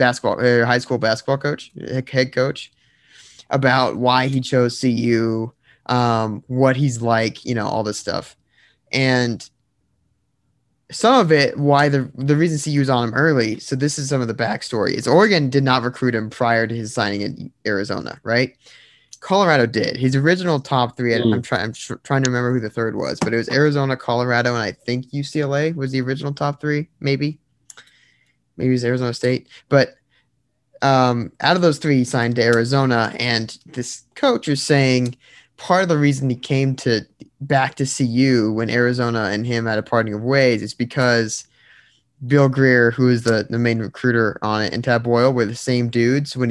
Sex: male